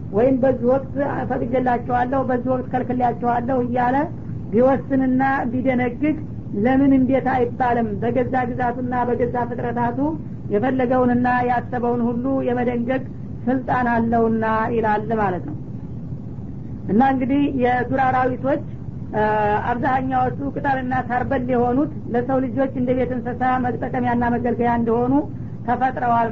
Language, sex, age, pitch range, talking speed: Amharic, female, 50-69, 240-260 Hz, 95 wpm